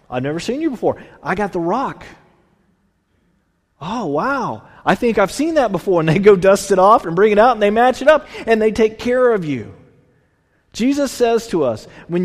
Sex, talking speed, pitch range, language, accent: male, 210 wpm, 150-230 Hz, English, American